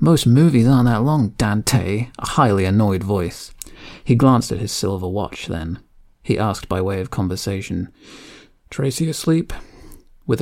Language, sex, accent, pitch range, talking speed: English, male, British, 95-125 Hz, 150 wpm